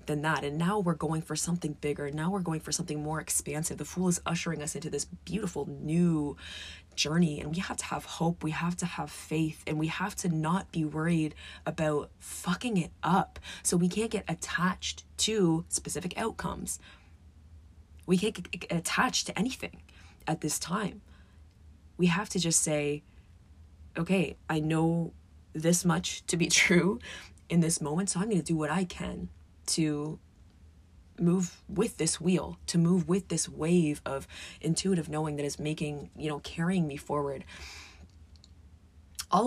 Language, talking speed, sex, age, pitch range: English, 170 wpm, female, 20-39, 140-170 Hz